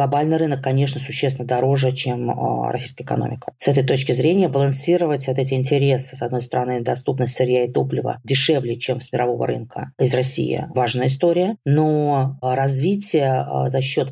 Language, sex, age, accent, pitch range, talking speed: Russian, female, 20-39, native, 120-135 Hz, 150 wpm